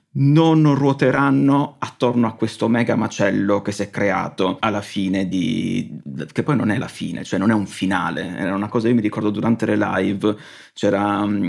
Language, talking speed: Italian, 190 wpm